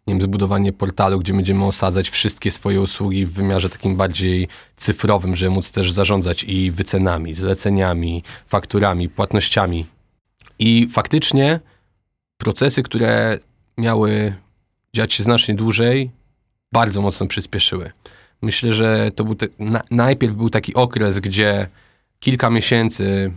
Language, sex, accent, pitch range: Polish, male, native, 100-115 Hz